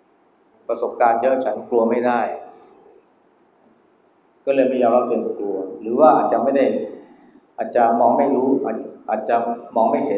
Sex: male